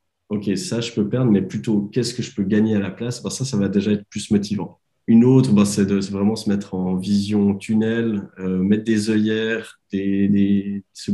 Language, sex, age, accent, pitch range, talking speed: French, male, 20-39, French, 100-110 Hz, 210 wpm